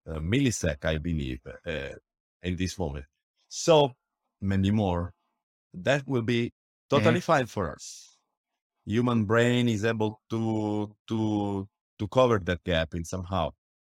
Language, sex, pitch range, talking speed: English, male, 95-120 Hz, 130 wpm